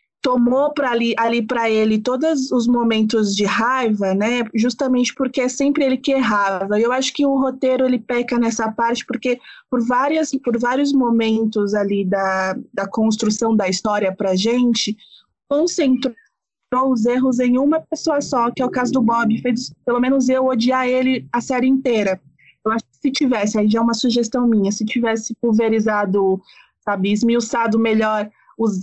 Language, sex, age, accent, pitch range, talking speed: Portuguese, female, 20-39, Brazilian, 215-255 Hz, 170 wpm